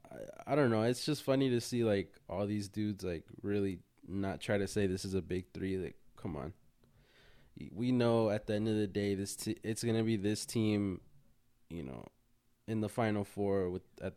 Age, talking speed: 20-39, 205 wpm